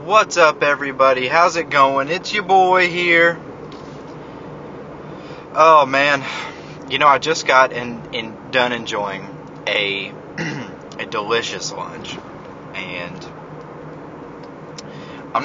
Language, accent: English, American